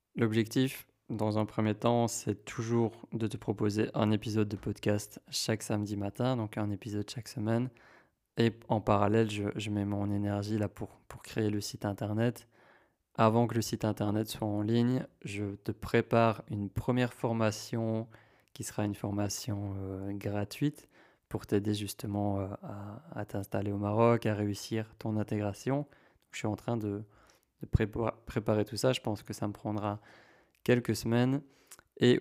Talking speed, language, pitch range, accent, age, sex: 170 wpm, French, 105-115 Hz, French, 20-39, male